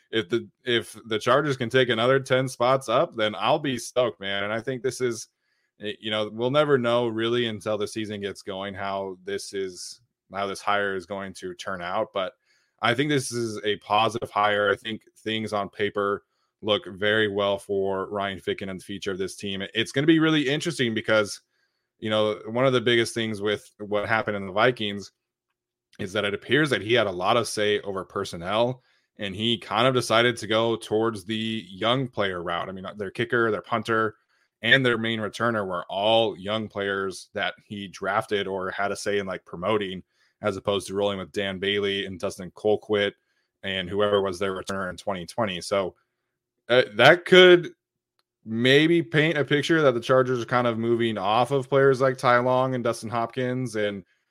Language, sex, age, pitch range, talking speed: English, male, 20-39, 100-120 Hz, 200 wpm